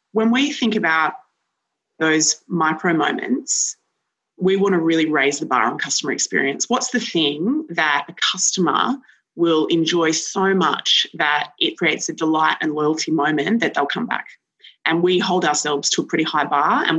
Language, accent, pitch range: English, Australian, 155-190 Hz